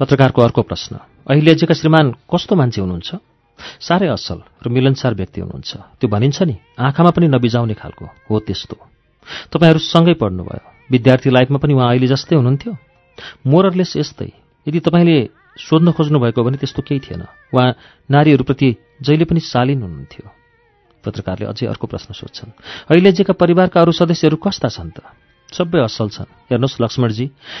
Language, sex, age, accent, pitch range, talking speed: English, male, 40-59, Indian, 115-150 Hz, 45 wpm